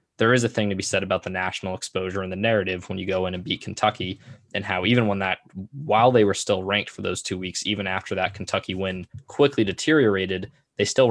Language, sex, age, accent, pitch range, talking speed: English, male, 10-29, American, 95-105 Hz, 240 wpm